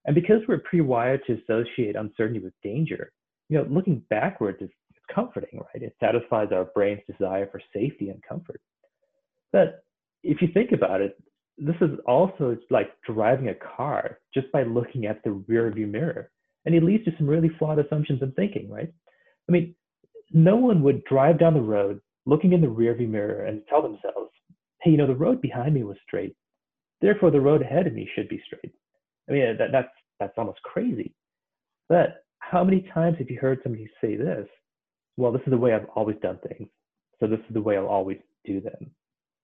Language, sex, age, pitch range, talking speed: English, male, 30-49, 110-170 Hz, 190 wpm